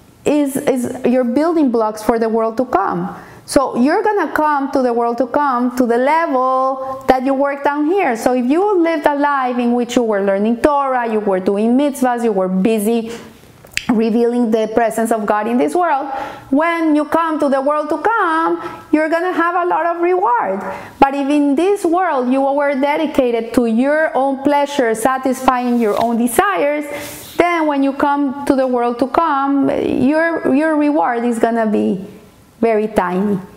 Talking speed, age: 180 wpm, 30-49